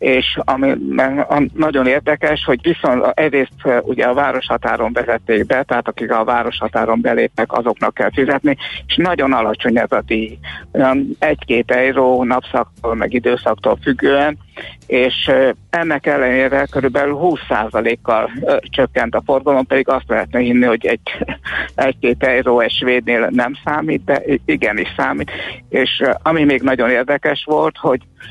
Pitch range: 120-145 Hz